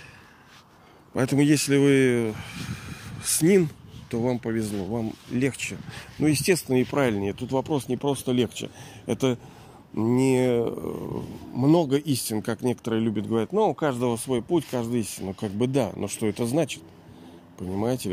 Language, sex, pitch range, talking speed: Russian, male, 105-130 Hz, 140 wpm